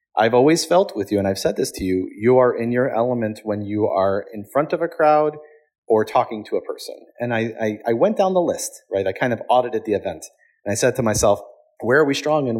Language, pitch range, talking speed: English, 100-155 Hz, 255 wpm